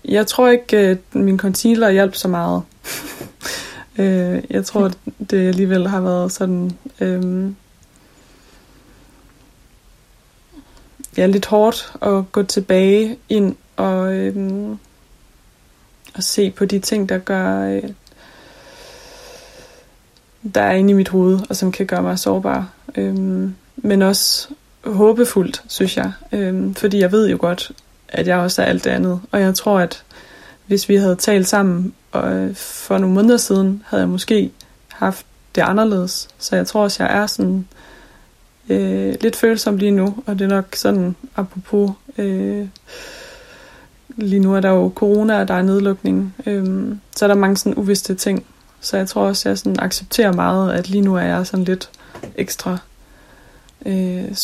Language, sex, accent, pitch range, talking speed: Danish, female, native, 185-210 Hz, 155 wpm